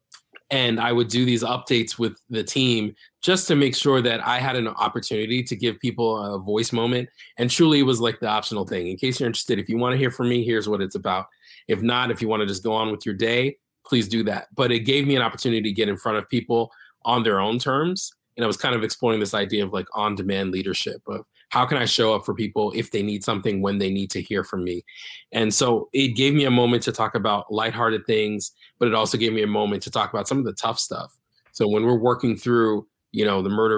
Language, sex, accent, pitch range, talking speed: English, male, American, 105-125 Hz, 260 wpm